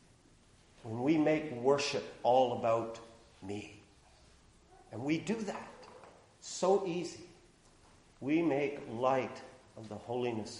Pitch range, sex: 115-170 Hz, male